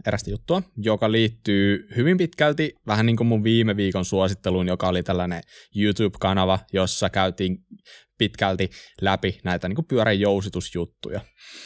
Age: 20-39